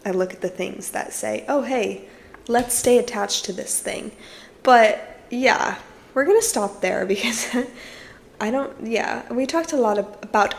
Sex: female